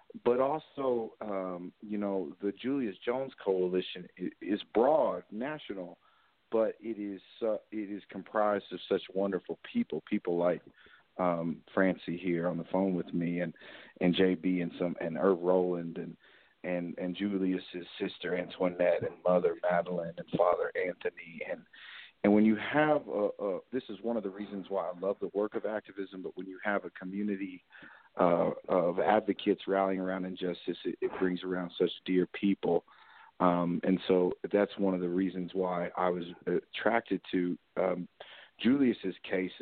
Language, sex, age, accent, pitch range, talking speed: English, male, 40-59, American, 90-105 Hz, 165 wpm